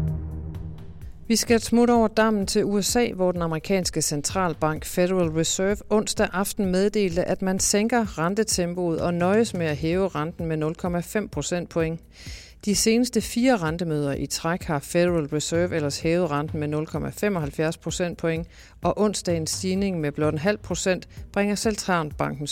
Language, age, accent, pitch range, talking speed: Danish, 50-69, native, 145-190 Hz, 145 wpm